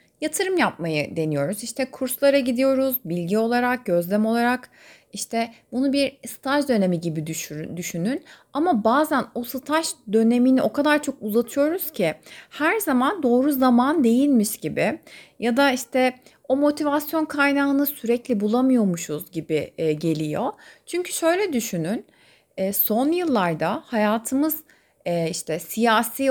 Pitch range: 210-280 Hz